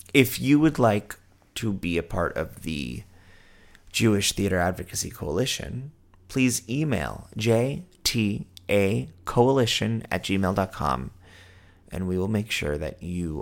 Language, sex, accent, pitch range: English, male, American, 90-105 Hz